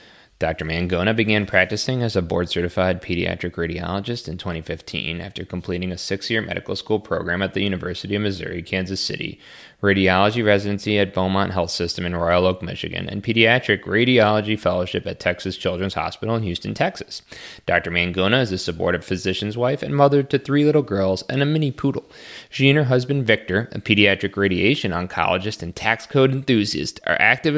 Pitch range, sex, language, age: 95-115 Hz, male, English, 20-39